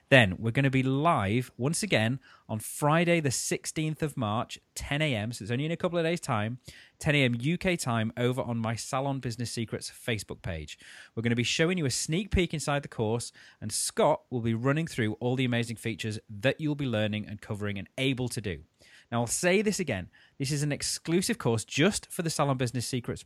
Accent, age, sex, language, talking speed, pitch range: British, 30-49, male, English, 220 wpm, 110-150 Hz